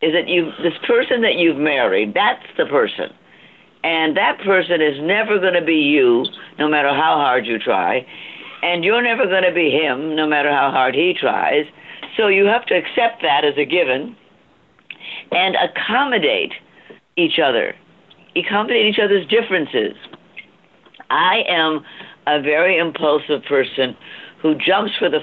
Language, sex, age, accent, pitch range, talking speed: English, female, 60-79, American, 155-200 Hz, 155 wpm